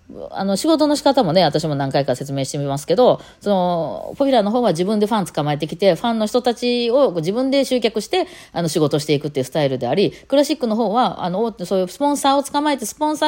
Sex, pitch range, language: female, 145-230 Hz, Japanese